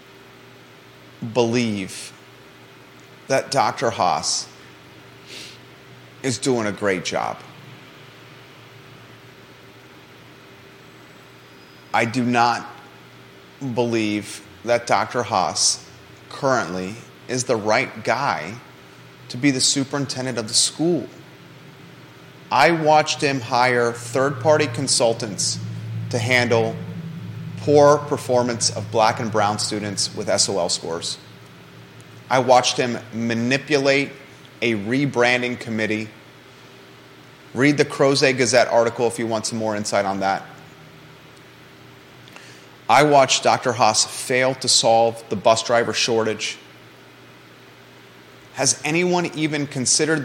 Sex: male